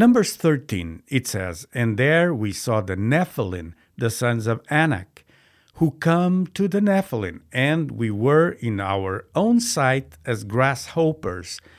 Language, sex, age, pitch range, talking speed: English, male, 60-79, 105-150 Hz, 145 wpm